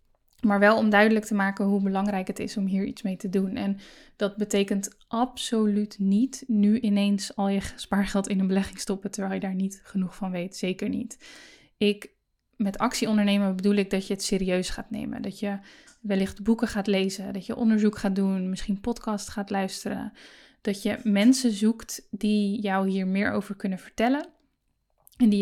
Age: 10-29